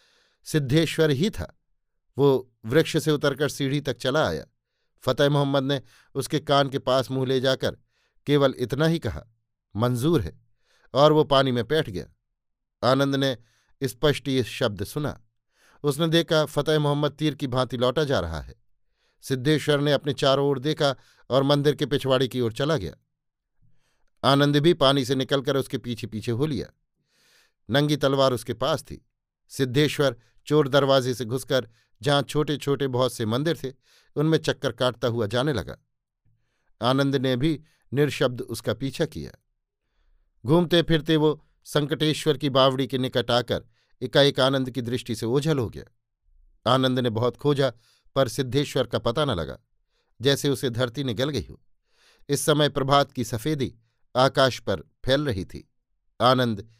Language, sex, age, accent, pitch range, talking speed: Hindi, male, 50-69, native, 120-145 Hz, 155 wpm